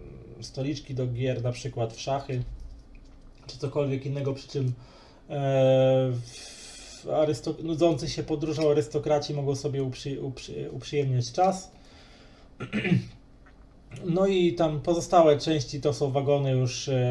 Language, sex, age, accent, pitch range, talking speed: Polish, male, 20-39, native, 120-145 Hz, 125 wpm